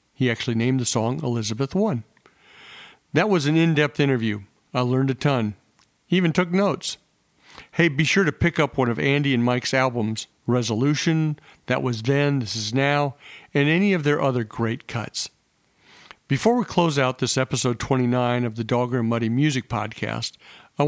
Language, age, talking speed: English, 50-69, 175 wpm